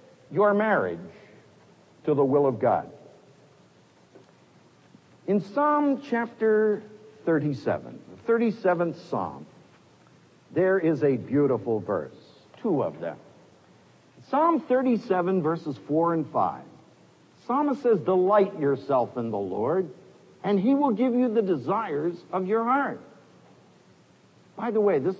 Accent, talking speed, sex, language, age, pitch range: American, 115 wpm, male, English, 60-79, 175-255 Hz